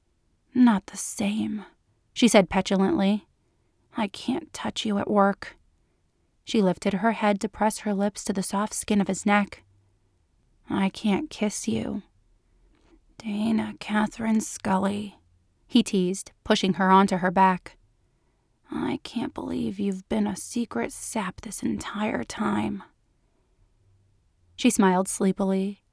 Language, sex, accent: English, female, American